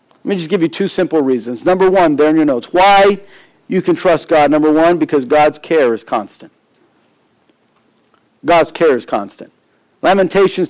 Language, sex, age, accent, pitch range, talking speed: English, male, 50-69, American, 160-230 Hz, 175 wpm